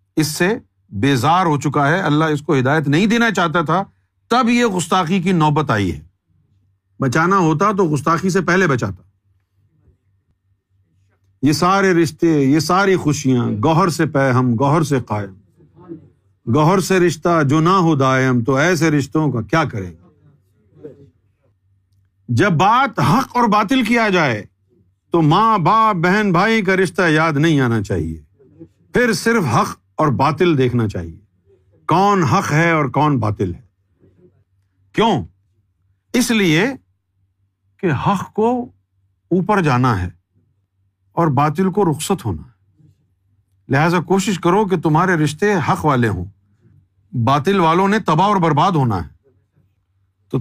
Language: Urdu